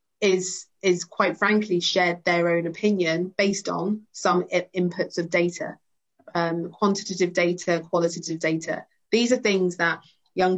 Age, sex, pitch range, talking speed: 30-49, female, 170-190 Hz, 140 wpm